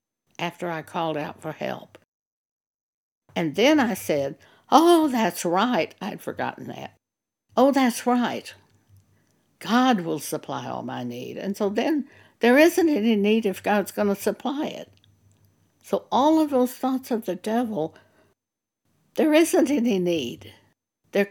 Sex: female